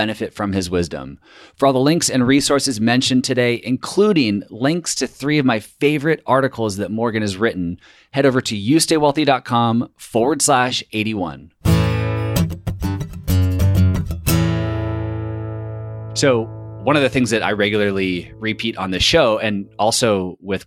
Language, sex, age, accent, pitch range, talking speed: English, male, 30-49, American, 95-115 Hz, 135 wpm